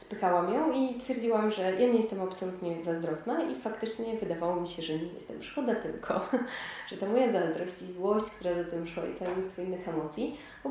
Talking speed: 200 wpm